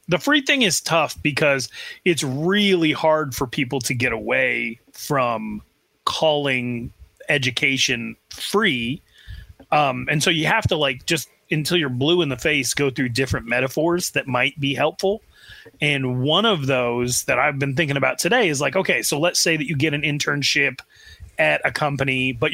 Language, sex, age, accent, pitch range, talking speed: English, male, 30-49, American, 135-175 Hz, 175 wpm